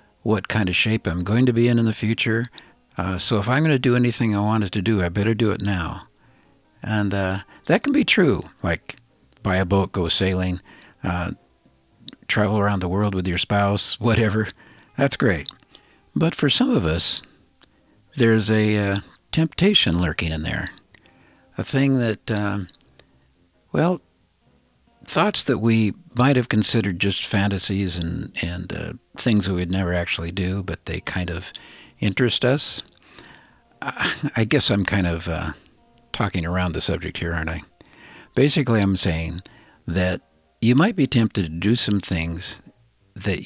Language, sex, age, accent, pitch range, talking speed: English, male, 60-79, American, 90-115 Hz, 165 wpm